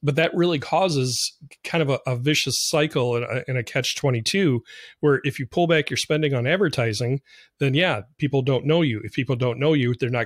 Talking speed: 230 wpm